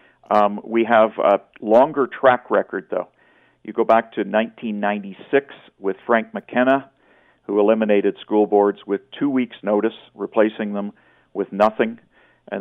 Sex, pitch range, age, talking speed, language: male, 100-110 Hz, 50-69, 140 wpm, English